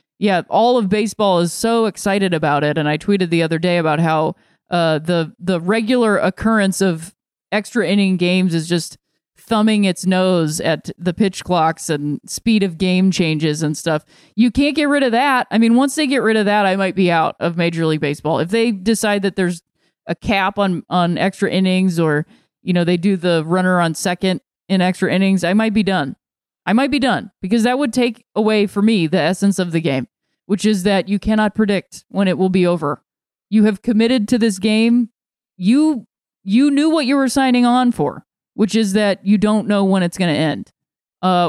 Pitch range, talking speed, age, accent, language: 175-220 Hz, 210 wpm, 20-39, American, English